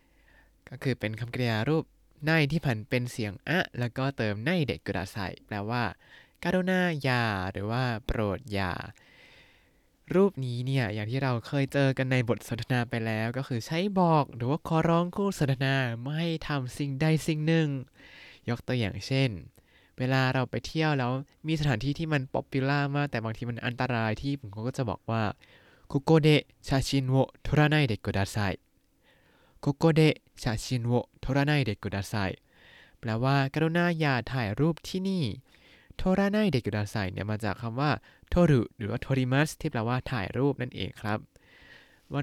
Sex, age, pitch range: male, 20-39, 115-145 Hz